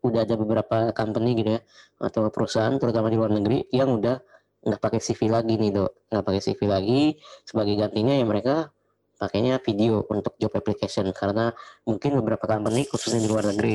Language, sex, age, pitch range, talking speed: Indonesian, female, 20-39, 105-120 Hz, 180 wpm